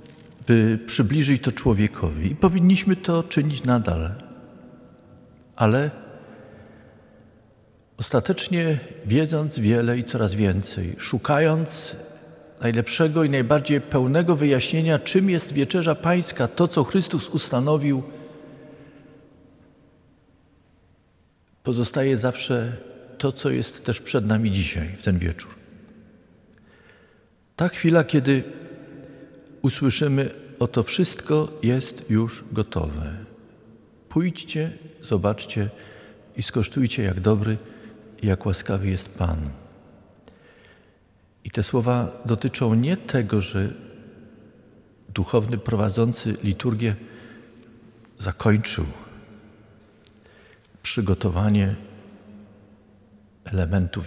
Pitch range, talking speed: 105-145 Hz, 80 wpm